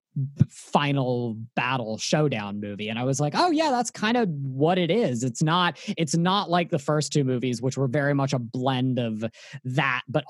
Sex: male